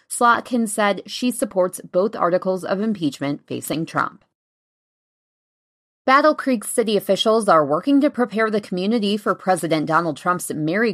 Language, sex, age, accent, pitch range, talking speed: English, female, 20-39, American, 160-225 Hz, 135 wpm